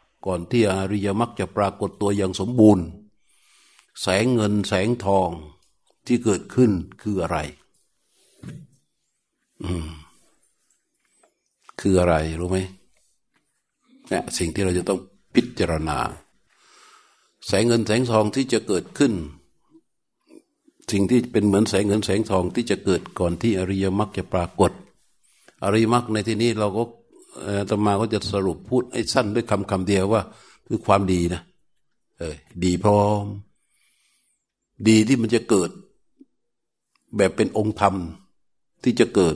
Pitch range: 95-115 Hz